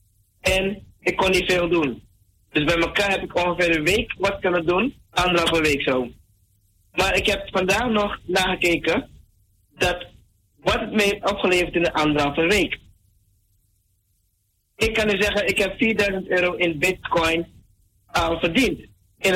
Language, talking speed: Dutch, 155 wpm